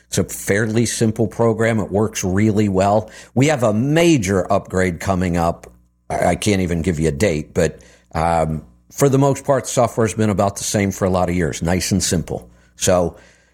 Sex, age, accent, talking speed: male, 50-69, American, 195 wpm